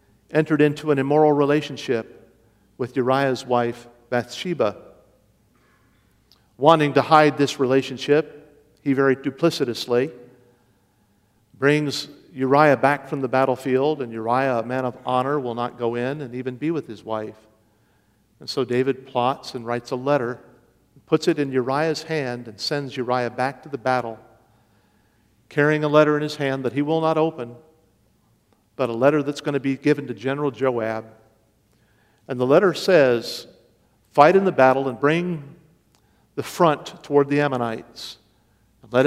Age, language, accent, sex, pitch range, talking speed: 50-69, English, American, male, 115-145 Hz, 150 wpm